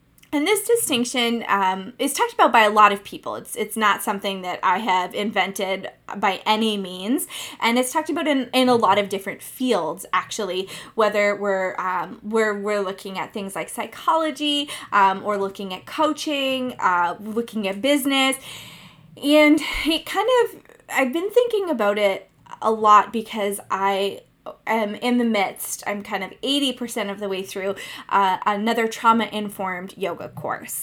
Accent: American